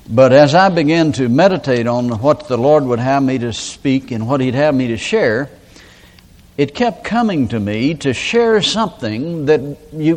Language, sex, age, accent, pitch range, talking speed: English, male, 60-79, American, 120-175 Hz, 190 wpm